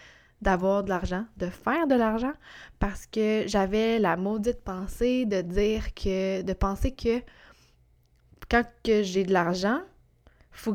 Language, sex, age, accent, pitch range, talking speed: French, female, 20-39, Canadian, 185-235 Hz, 140 wpm